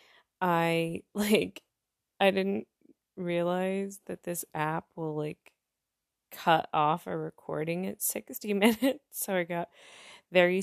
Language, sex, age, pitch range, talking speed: English, female, 20-39, 175-230 Hz, 120 wpm